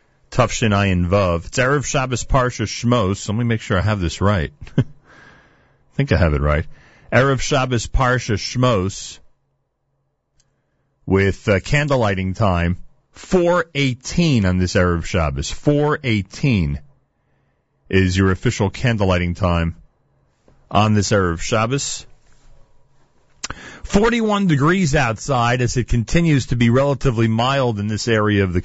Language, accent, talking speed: English, American, 130 wpm